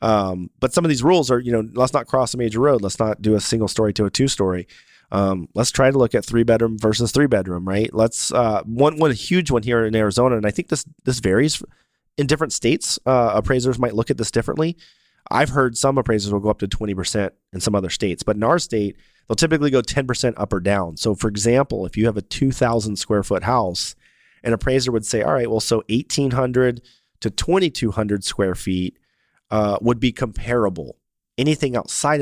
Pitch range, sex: 105-130 Hz, male